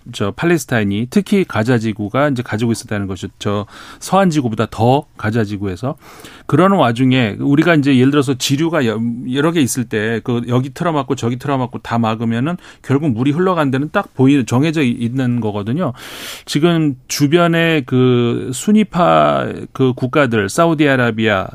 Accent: native